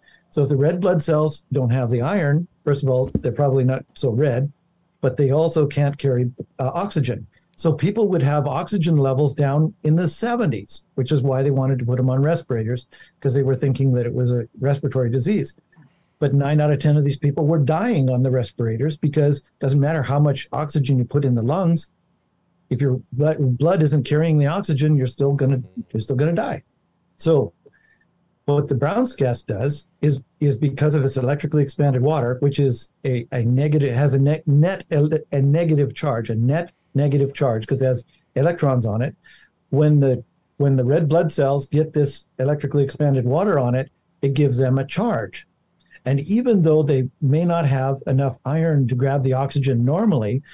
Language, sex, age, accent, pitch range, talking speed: English, male, 50-69, American, 130-155 Hz, 195 wpm